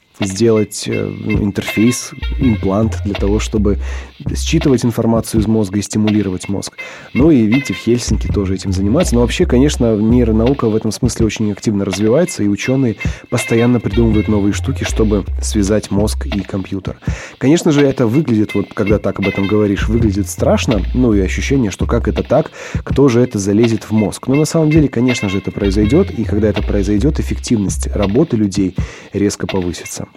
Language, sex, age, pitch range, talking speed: Russian, male, 20-39, 100-120 Hz, 170 wpm